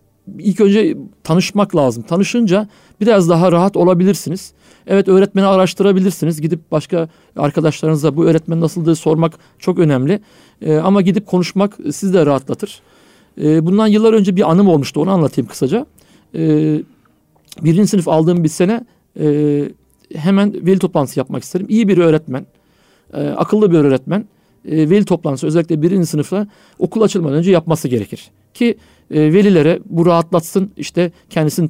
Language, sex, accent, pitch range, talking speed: Turkish, male, native, 155-195 Hz, 140 wpm